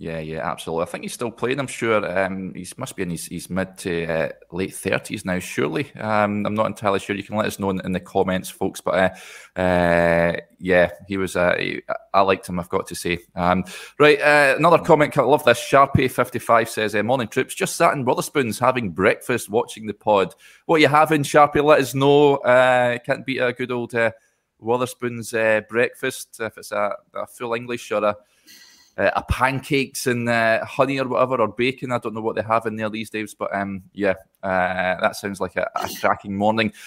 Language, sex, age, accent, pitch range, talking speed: English, male, 20-39, British, 100-135 Hz, 210 wpm